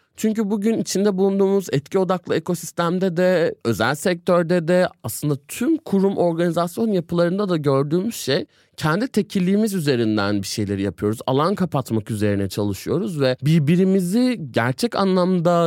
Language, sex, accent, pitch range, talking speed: Turkish, male, native, 135-195 Hz, 125 wpm